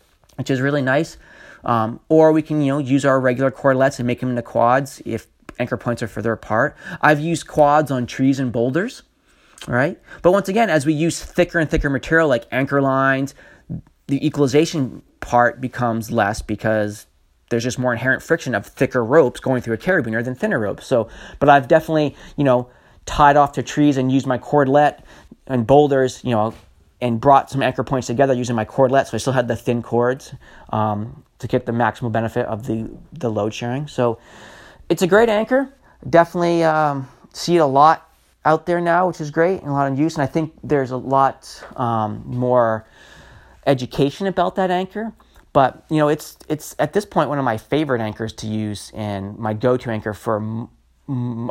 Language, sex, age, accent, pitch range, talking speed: English, male, 30-49, American, 120-150 Hz, 195 wpm